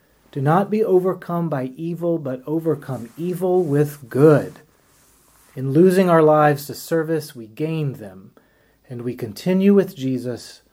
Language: English